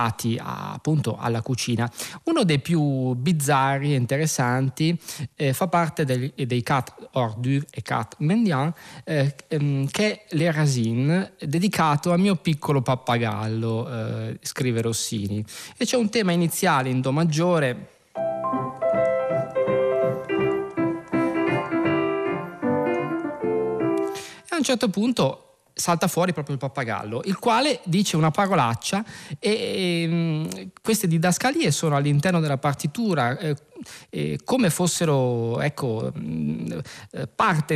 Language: Italian